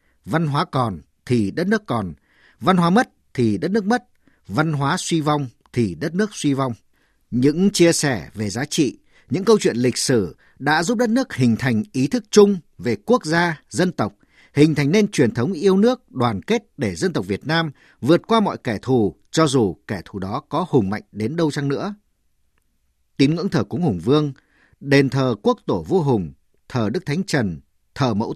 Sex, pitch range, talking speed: male, 110-175 Hz, 205 wpm